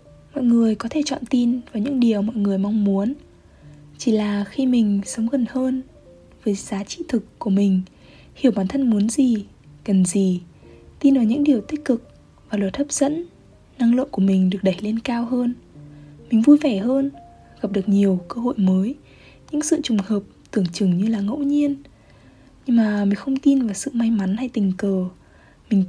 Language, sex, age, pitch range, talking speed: Vietnamese, female, 20-39, 200-255 Hz, 195 wpm